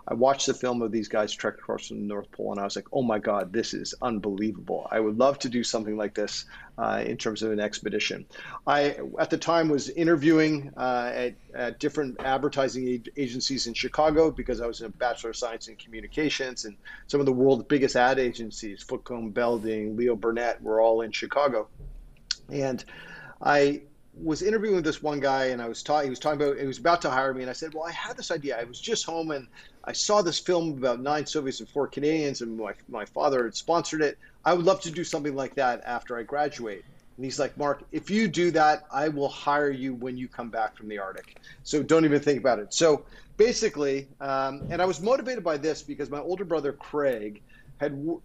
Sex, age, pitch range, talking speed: male, 40-59, 120-150 Hz, 220 wpm